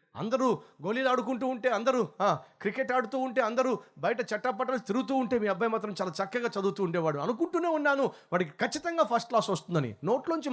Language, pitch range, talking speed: Telugu, 155-235 Hz, 160 wpm